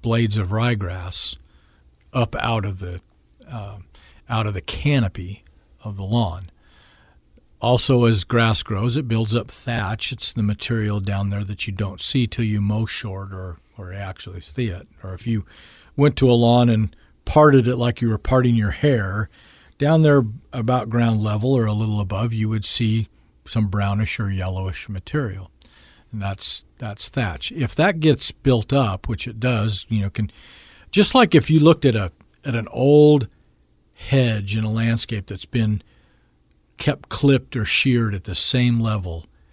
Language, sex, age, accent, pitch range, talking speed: English, male, 50-69, American, 90-120 Hz, 170 wpm